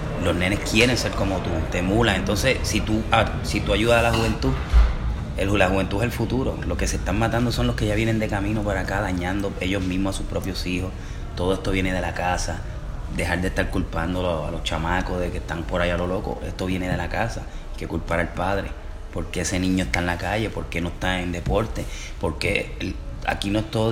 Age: 30-49